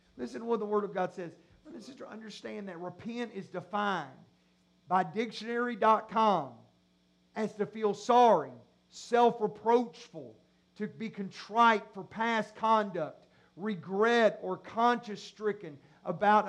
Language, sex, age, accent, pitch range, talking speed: English, male, 50-69, American, 195-260 Hz, 120 wpm